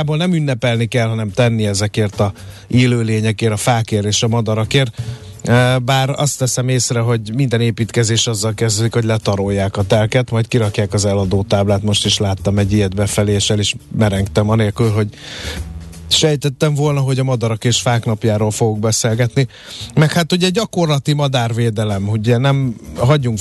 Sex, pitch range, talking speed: male, 110-135 Hz, 150 wpm